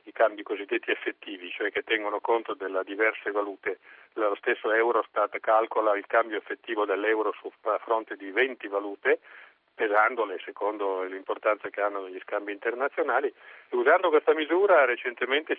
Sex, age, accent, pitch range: male, 40-59, native, 105-160 Hz